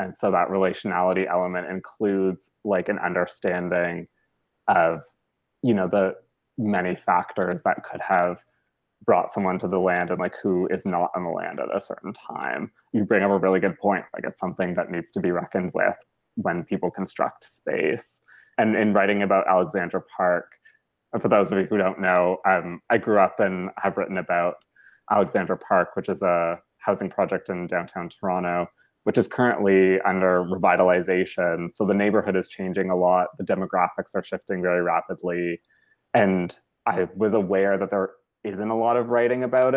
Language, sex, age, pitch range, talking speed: English, male, 20-39, 90-100 Hz, 175 wpm